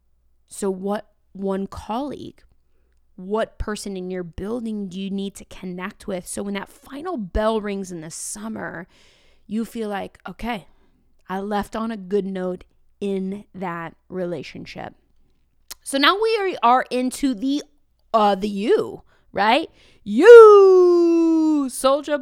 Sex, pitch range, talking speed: female, 195-250 Hz, 130 wpm